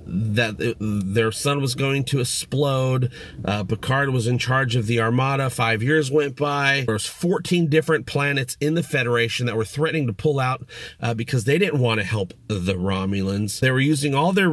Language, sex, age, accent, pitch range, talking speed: English, male, 40-59, American, 115-150 Hz, 195 wpm